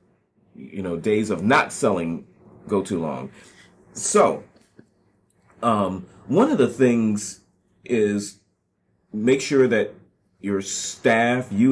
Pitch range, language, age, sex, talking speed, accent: 90-125 Hz, English, 30-49, male, 115 wpm, American